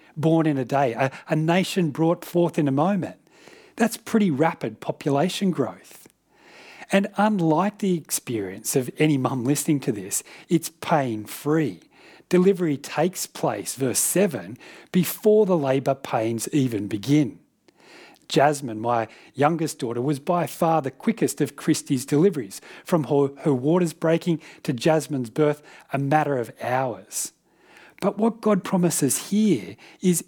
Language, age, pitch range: English, 40-59, 140-185 Hz